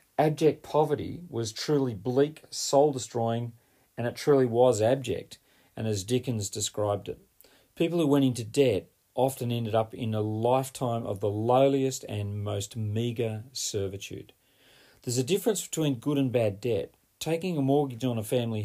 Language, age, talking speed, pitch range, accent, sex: English, 40-59, 155 wpm, 110-140 Hz, Australian, male